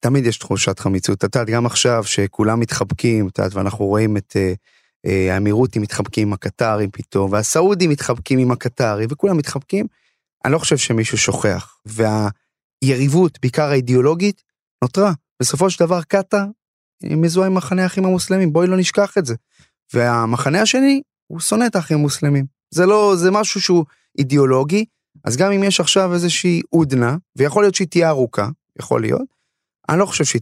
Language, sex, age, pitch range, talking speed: Hebrew, male, 30-49, 115-175 Hz, 130 wpm